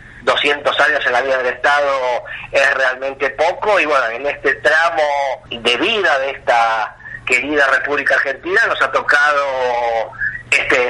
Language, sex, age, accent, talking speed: Spanish, male, 40-59, Argentinian, 145 wpm